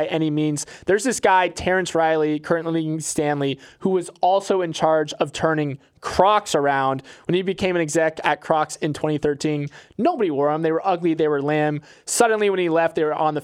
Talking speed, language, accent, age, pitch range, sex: 200 wpm, English, American, 20-39, 150-170 Hz, male